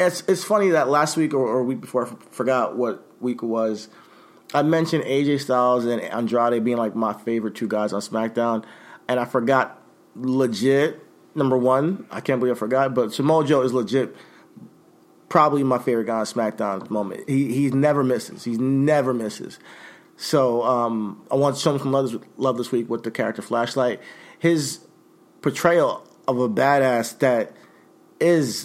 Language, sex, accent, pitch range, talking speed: English, male, American, 120-140 Hz, 170 wpm